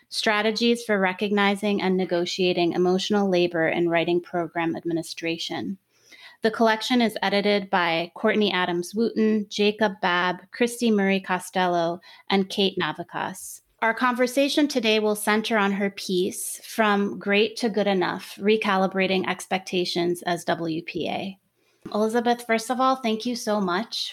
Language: English